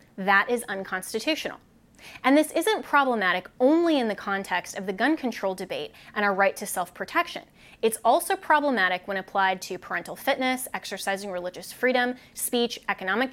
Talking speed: 155 wpm